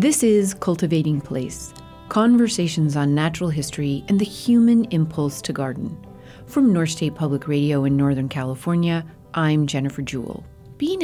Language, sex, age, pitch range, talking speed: English, female, 40-59, 145-195 Hz, 140 wpm